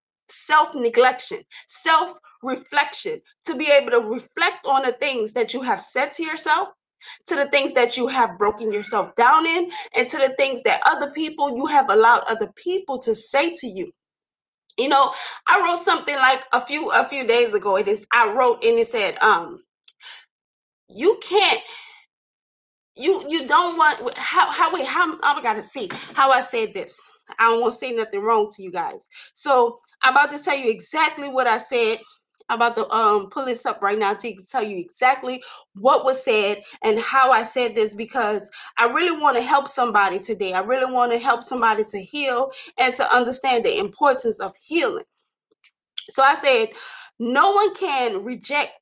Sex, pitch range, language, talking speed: female, 240-390 Hz, English, 185 wpm